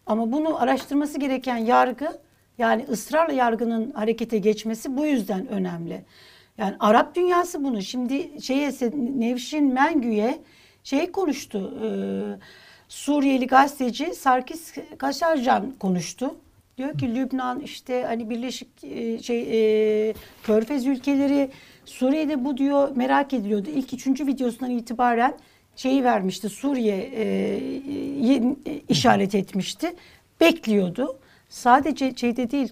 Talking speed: 105 wpm